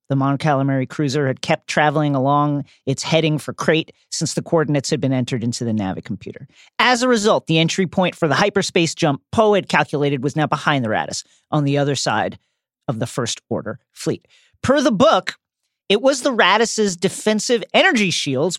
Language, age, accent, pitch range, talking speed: English, 40-59, American, 145-195 Hz, 185 wpm